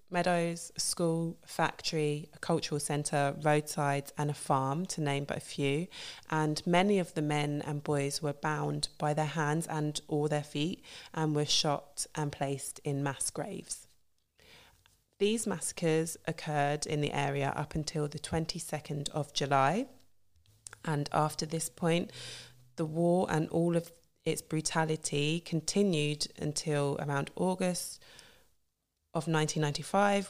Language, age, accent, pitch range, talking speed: English, 20-39, British, 145-165 Hz, 135 wpm